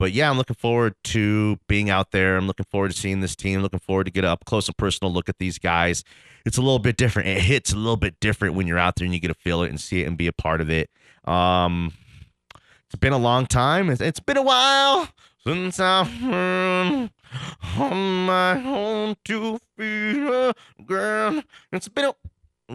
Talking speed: 215 wpm